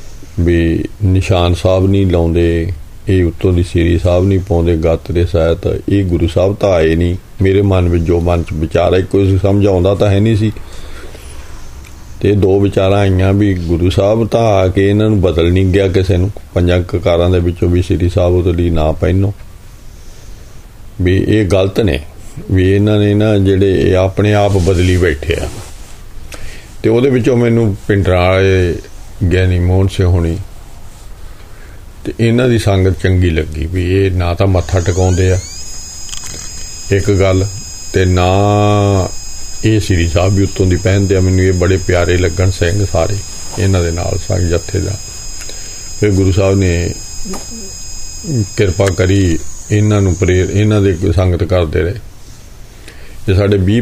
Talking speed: 155 wpm